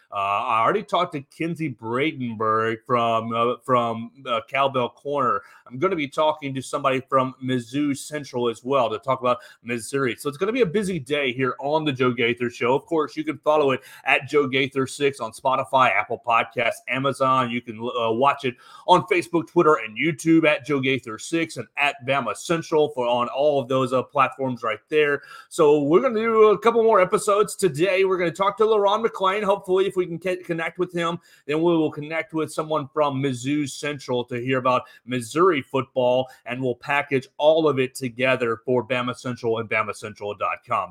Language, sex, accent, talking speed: English, male, American, 200 wpm